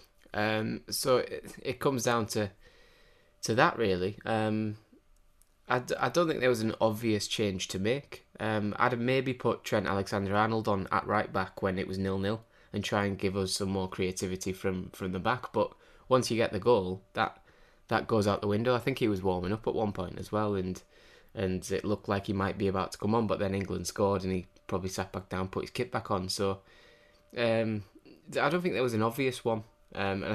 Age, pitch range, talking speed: 20-39, 95-110 Hz, 225 wpm